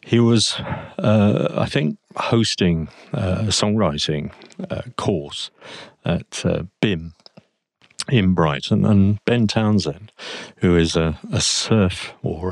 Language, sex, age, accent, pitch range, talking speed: English, male, 50-69, British, 90-115 Hz, 120 wpm